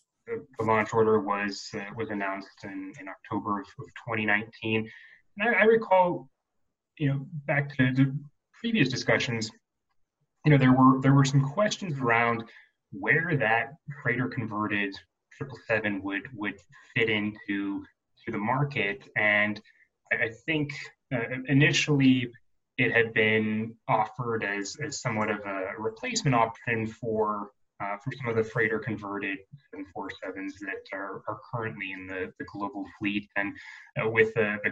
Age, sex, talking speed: 20-39, male, 145 wpm